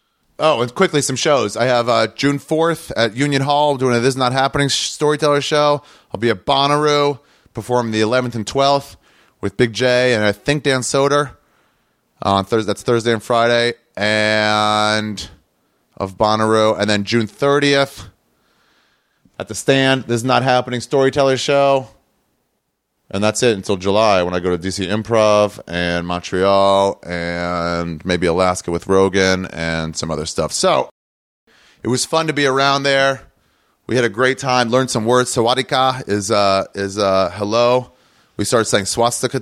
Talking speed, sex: 165 wpm, male